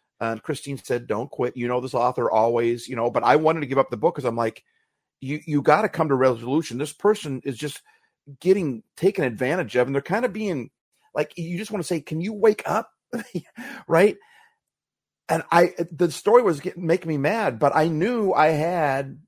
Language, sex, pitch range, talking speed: English, male, 130-170 Hz, 210 wpm